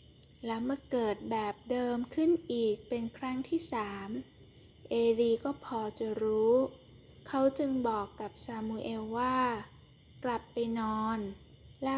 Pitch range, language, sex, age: 215-255 Hz, Thai, female, 10-29